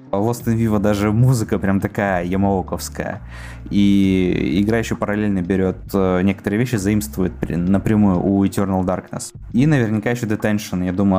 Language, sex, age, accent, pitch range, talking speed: Russian, male, 20-39, native, 95-115 Hz, 145 wpm